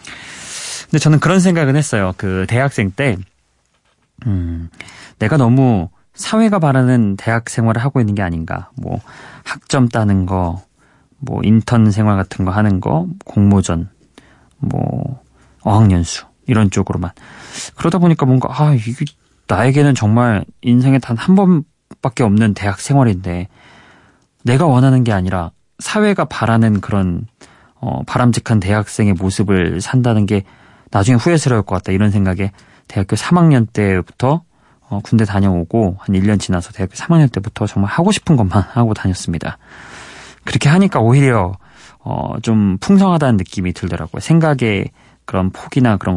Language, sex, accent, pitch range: Korean, male, native, 100-135 Hz